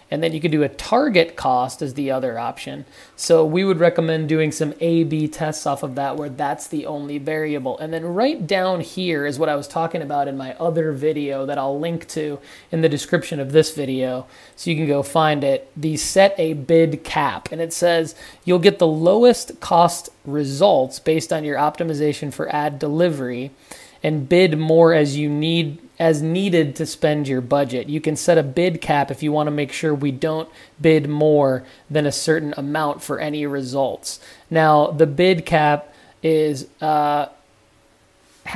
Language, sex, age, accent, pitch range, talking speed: English, male, 30-49, American, 145-165 Hz, 190 wpm